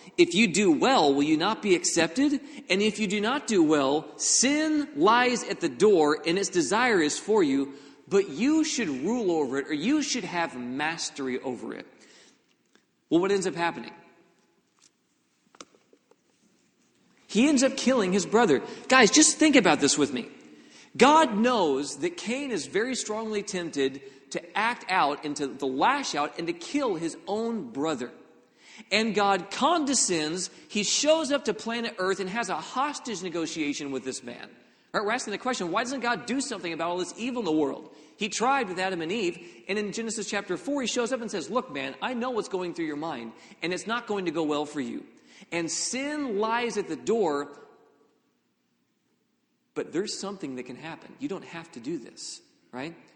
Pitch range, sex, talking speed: 165-255 Hz, male, 185 wpm